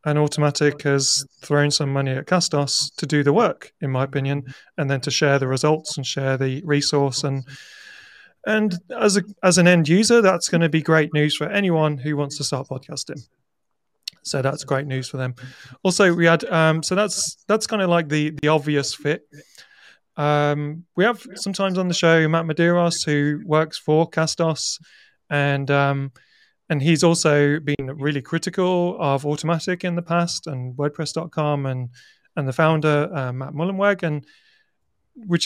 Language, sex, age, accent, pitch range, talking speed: English, male, 30-49, British, 145-170 Hz, 175 wpm